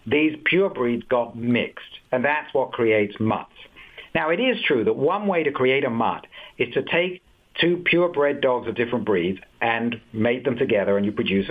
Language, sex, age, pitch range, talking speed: English, male, 60-79, 120-165 Hz, 195 wpm